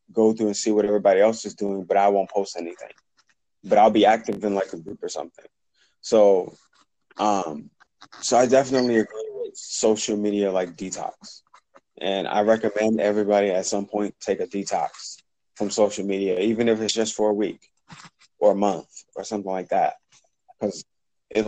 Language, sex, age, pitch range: English, male, 20-39, 100-115 Hz